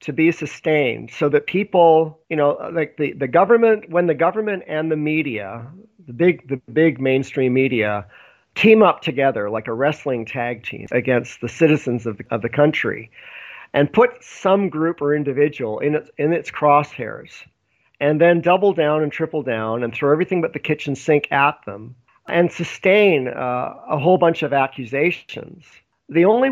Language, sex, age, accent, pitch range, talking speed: English, male, 50-69, American, 135-165 Hz, 175 wpm